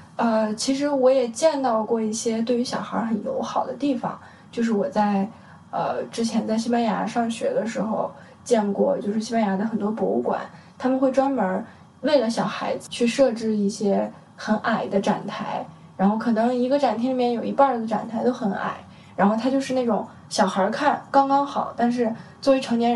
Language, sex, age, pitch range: Chinese, female, 10-29, 210-245 Hz